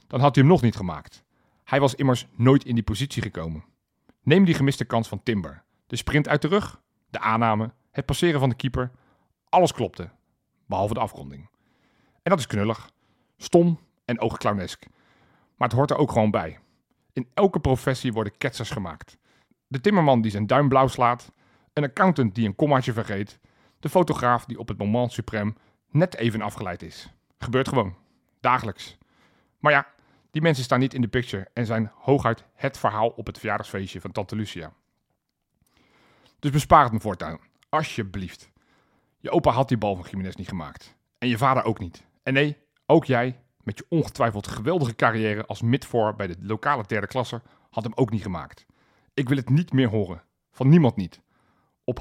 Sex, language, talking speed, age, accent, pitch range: male, Dutch, 180 wpm, 40-59, Belgian, 105-135 Hz